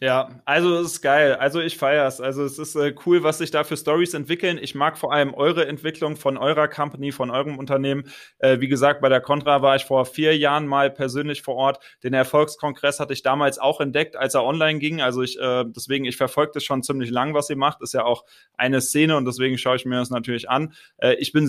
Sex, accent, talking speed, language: male, German, 245 wpm, German